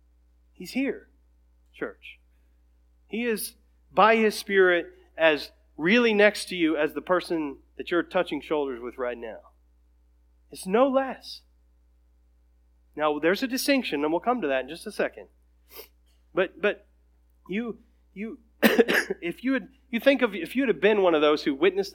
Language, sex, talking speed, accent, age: English, male, 160 wpm, American, 30-49